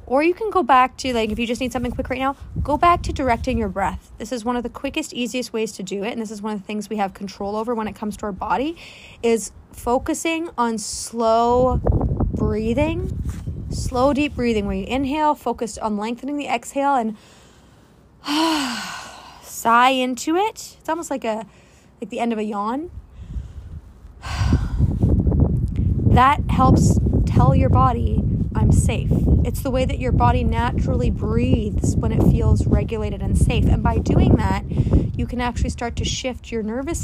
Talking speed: 180 wpm